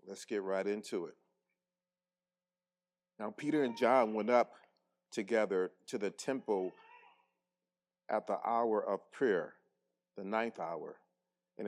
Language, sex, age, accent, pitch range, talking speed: English, male, 40-59, American, 95-130 Hz, 125 wpm